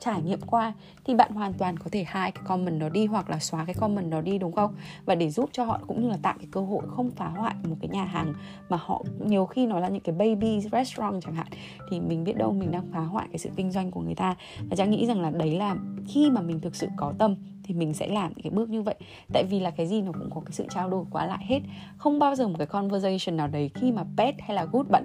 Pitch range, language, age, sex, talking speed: 165-215 Hz, Vietnamese, 20-39, female, 290 wpm